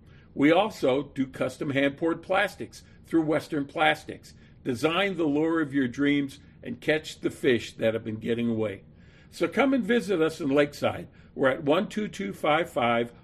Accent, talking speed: American, 155 wpm